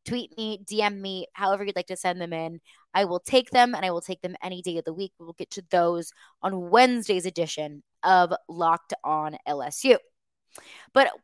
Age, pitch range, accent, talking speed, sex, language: 20-39, 180-265 Hz, American, 200 wpm, female, English